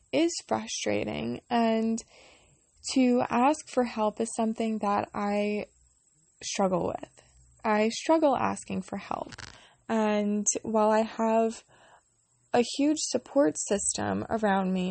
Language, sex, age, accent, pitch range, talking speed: English, female, 20-39, American, 200-230 Hz, 115 wpm